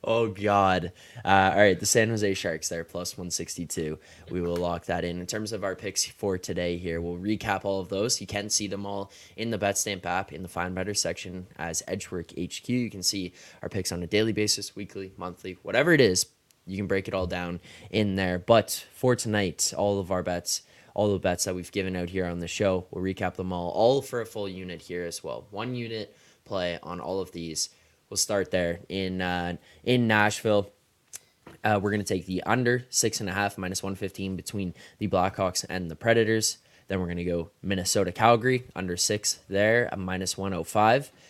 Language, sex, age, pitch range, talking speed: English, male, 10-29, 90-105 Hz, 210 wpm